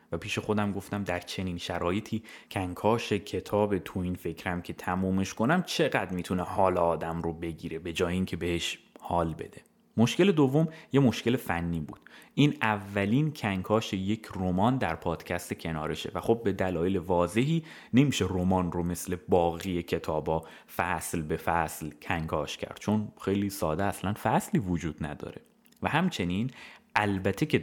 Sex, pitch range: male, 85-115 Hz